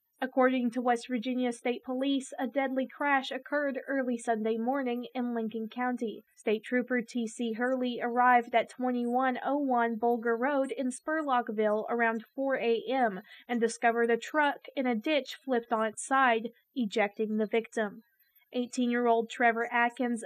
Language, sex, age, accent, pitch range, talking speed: English, female, 20-39, American, 230-265 Hz, 140 wpm